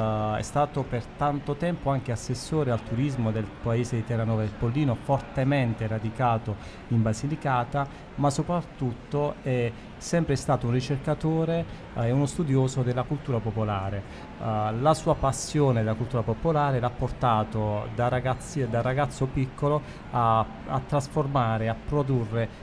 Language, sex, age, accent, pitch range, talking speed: Italian, male, 40-59, native, 115-140 Hz, 130 wpm